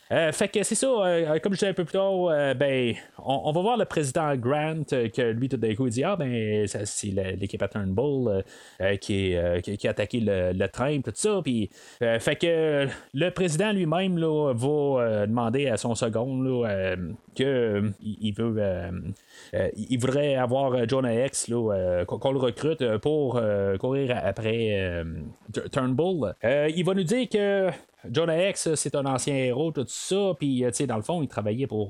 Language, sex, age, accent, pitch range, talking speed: French, male, 30-49, Canadian, 110-150 Hz, 205 wpm